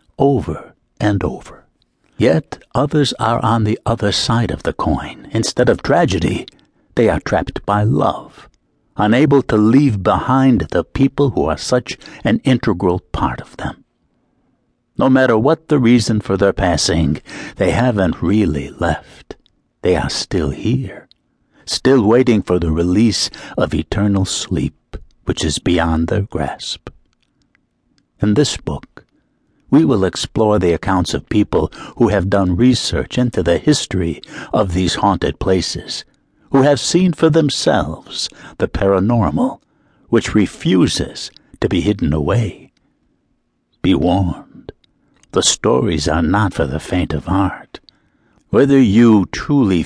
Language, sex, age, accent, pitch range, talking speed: English, male, 60-79, American, 90-125 Hz, 135 wpm